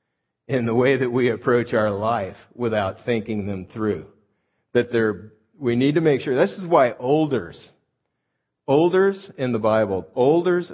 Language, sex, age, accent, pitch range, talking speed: English, male, 50-69, American, 100-125 Hz, 150 wpm